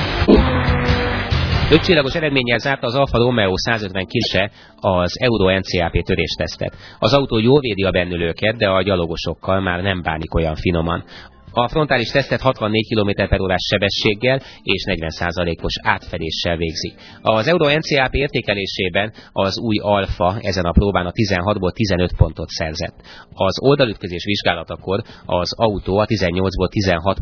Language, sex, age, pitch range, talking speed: Hungarian, male, 30-49, 90-110 Hz, 135 wpm